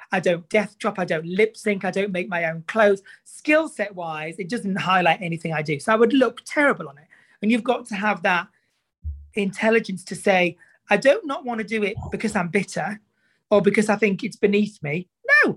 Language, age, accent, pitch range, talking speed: English, 30-49, British, 180-220 Hz, 220 wpm